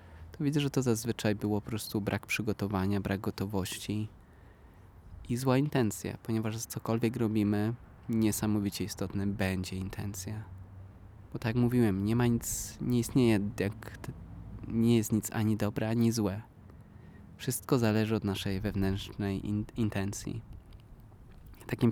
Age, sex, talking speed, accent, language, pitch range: 20-39, male, 125 wpm, native, Polish, 100-115 Hz